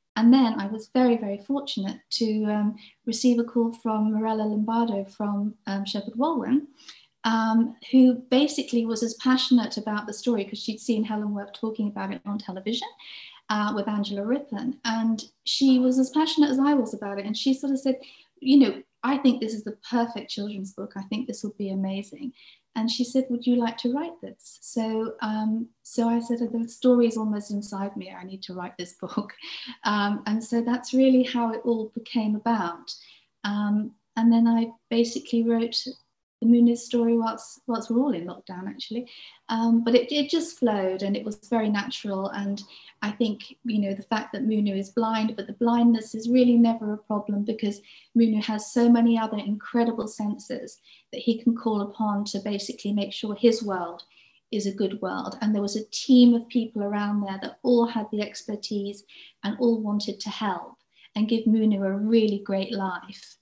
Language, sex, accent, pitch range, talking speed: English, female, British, 210-240 Hz, 190 wpm